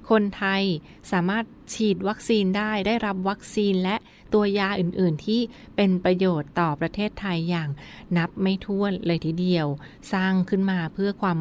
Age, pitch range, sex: 20-39, 175-205 Hz, female